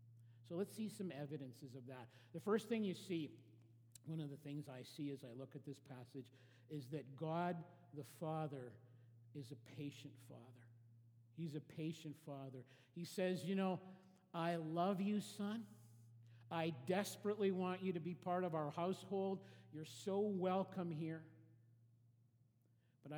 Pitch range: 130-175 Hz